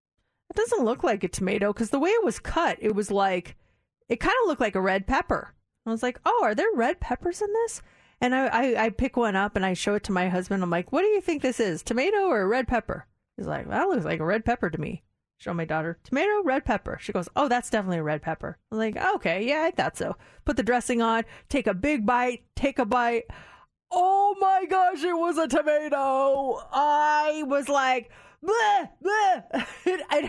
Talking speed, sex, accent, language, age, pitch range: 225 wpm, female, American, English, 30-49, 205-295 Hz